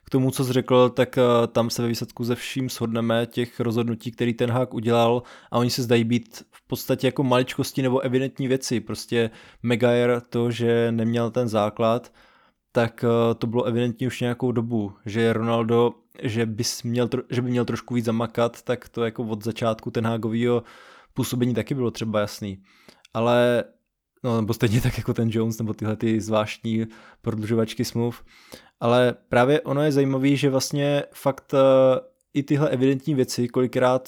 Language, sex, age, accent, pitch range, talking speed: Czech, male, 20-39, native, 115-125 Hz, 165 wpm